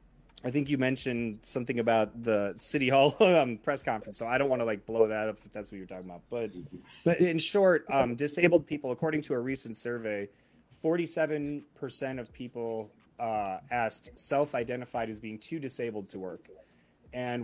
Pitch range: 115-145 Hz